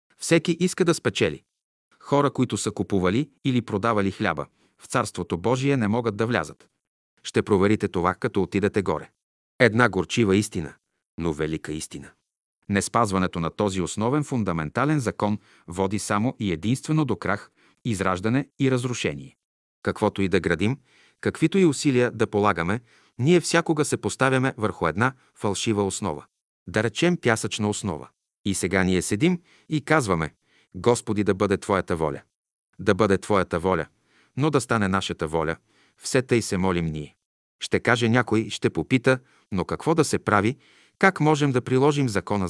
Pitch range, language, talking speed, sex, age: 95-130 Hz, Bulgarian, 150 wpm, male, 40-59